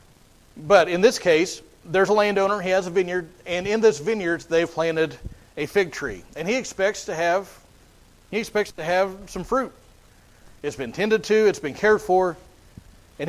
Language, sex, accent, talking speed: English, male, American, 180 wpm